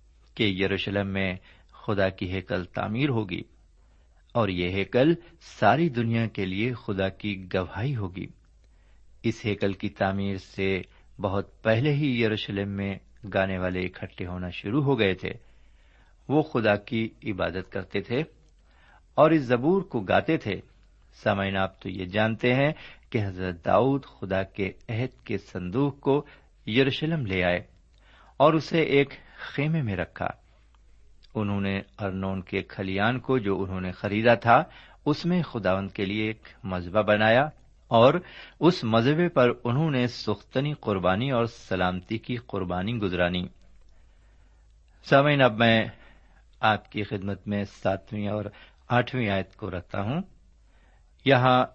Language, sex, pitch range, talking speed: Urdu, male, 95-125 Hz, 140 wpm